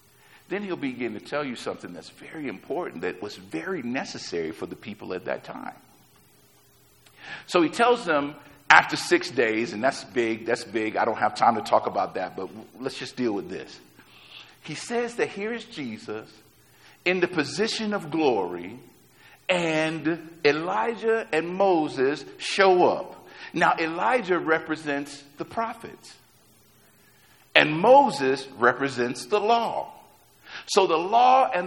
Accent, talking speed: American, 145 wpm